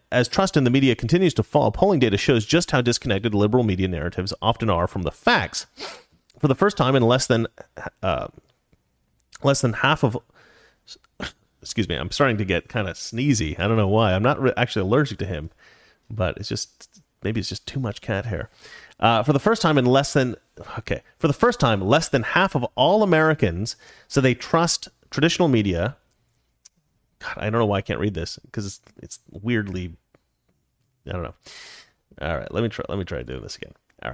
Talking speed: 205 wpm